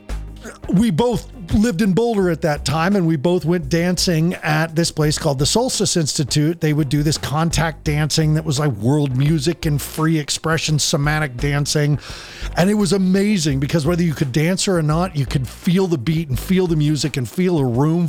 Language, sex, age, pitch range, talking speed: English, male, 40-59, 140-190 Hz, 200 wpm